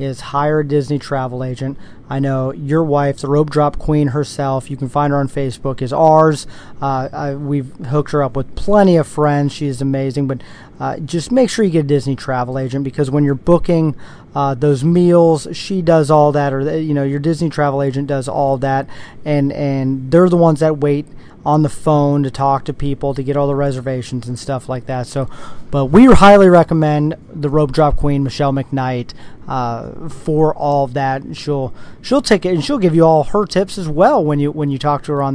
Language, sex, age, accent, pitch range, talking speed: English, male, 30-49, American, 135-165 Hz, 220 wpm